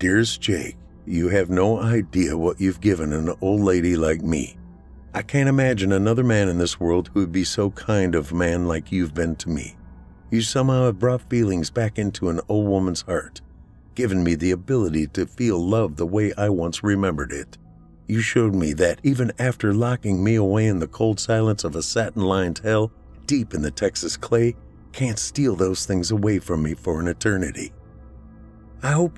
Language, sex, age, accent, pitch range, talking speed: English, male, 50-69, American, 85-110 Hz, 190 wpm